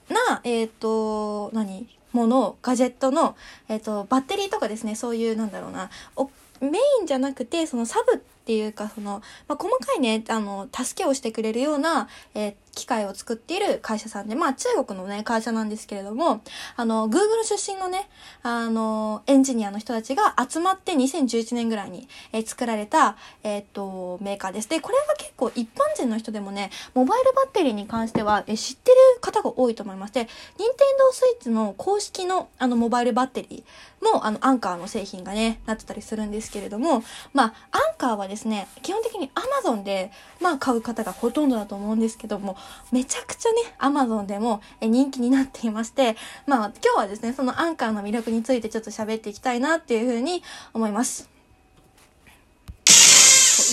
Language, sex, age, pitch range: Japanese, female, 20-39, 215-275 Hz